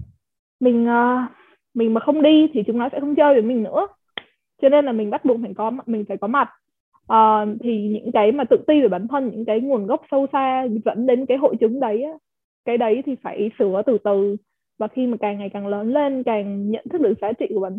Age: 20-39